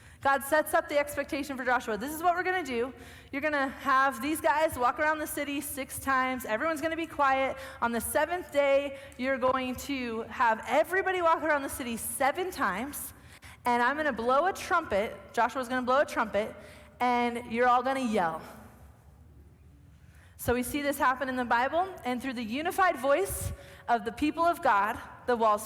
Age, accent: 30-49, American